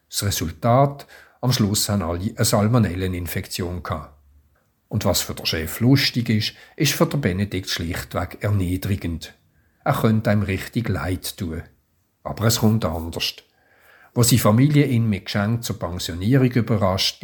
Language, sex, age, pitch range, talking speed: German, male, 50-69, 90-115 Hz, 145 wpm